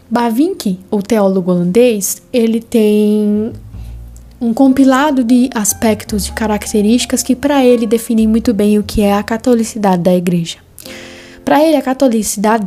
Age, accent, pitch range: 10-29, Brazilian, 200-250 Hz